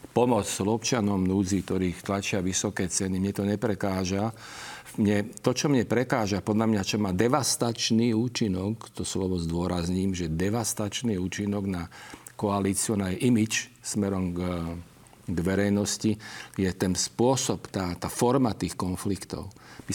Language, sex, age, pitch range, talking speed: Slovak, male, 50-69, 95-115 Hz, 130 wpm